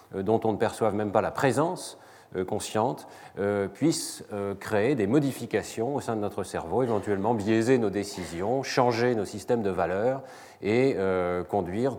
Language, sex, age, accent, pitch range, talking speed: French, male, 40-59, French, 100-130 Hz, 145 wpm